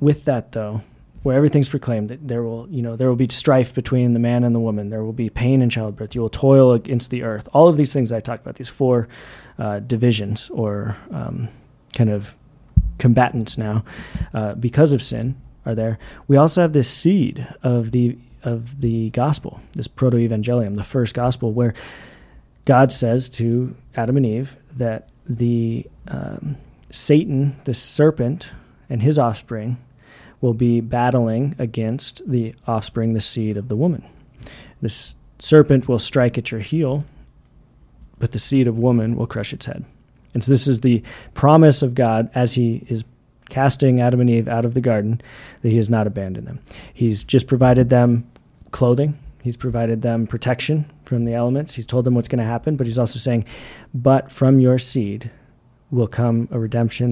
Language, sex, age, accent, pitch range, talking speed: English, male, 30-49, American, 115-130 Hz, 180 wpm